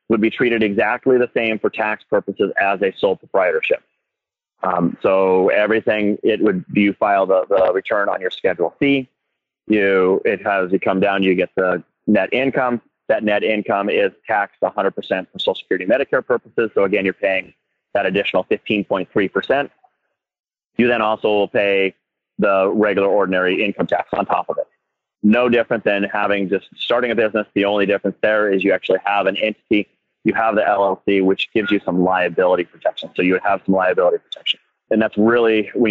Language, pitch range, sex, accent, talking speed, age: English, 100-115 Hz, male, American, 180 wpm, 30-49